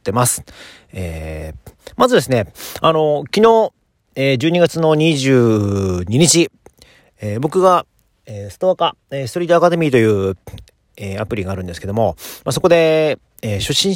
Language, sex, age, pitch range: Japanese, male, 40-59, 100-150 Hz